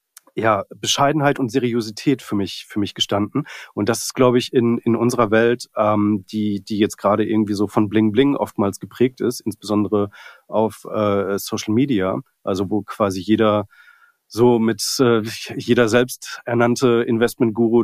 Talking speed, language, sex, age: 155 wpm, German, male, 30-49